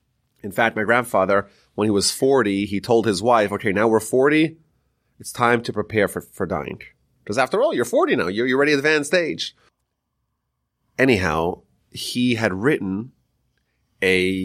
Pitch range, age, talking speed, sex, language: 100-150 Hz, 30-49, 170 wpm, male, English